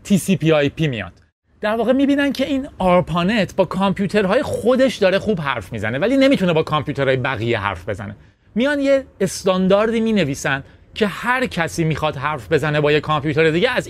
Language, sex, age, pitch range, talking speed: Persian, male, 30-49, 135-205 Hz, 165 wpm